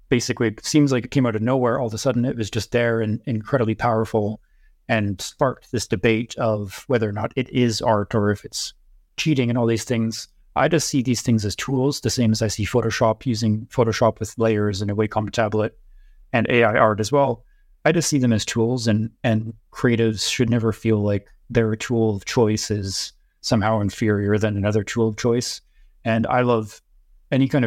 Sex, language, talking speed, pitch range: male, English, 205 wpm, 110-125 Hz